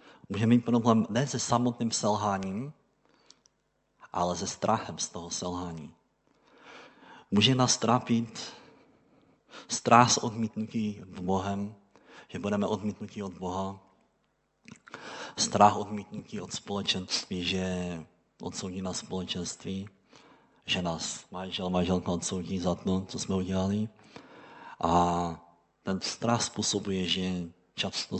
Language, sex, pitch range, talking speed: Czech, male, 90-110 Hz, 105 wpm